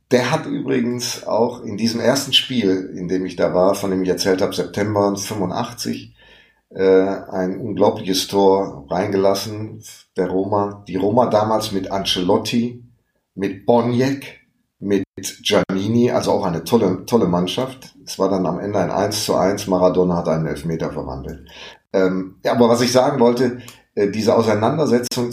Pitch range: 90-110 Hz